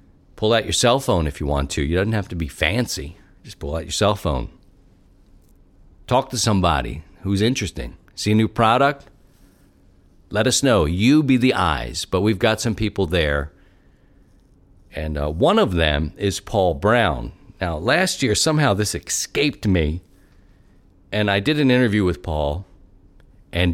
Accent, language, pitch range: American, English, 85-115 Hz